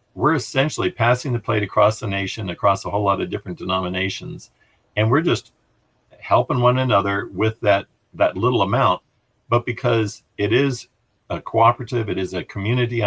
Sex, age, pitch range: male, 50-69, 100-120 Hz